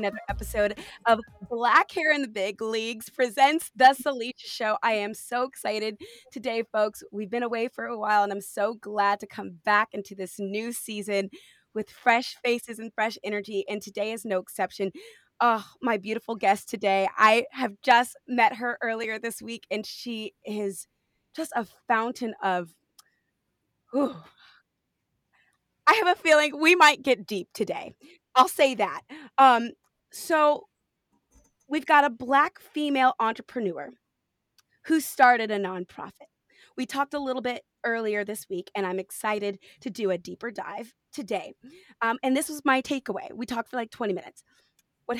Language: English